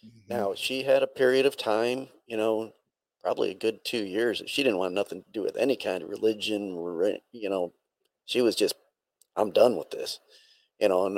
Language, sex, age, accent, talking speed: English, male, 40-59, American, 205 wpm